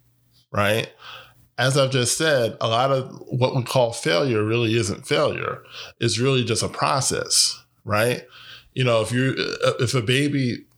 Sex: male